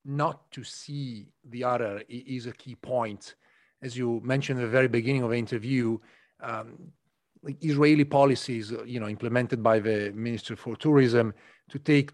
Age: 40-59